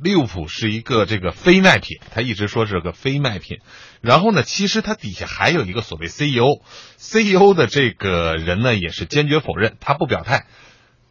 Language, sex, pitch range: Chinese, male, 90-130 Hz